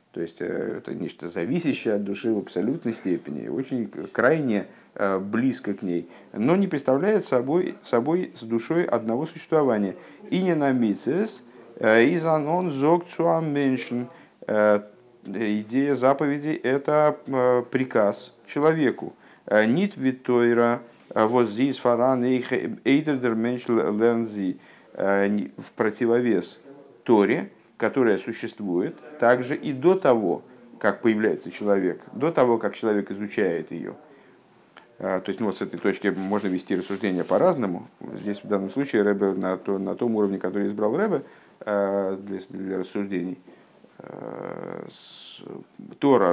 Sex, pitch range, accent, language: male, 100-135 Hz, native, Russian